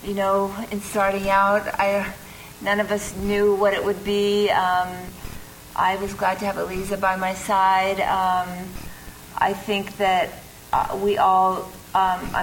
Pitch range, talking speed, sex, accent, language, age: 185-200 Hz, 150 wpm, female, American, English, 40-59